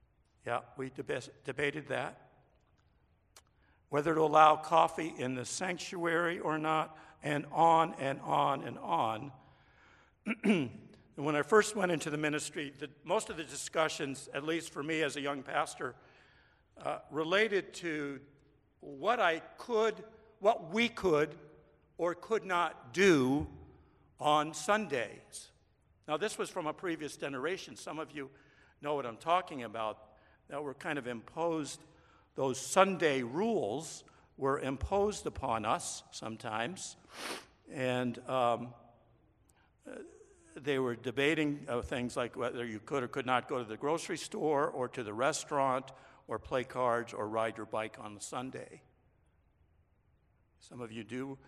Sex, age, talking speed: male, 60-79, 140 wpm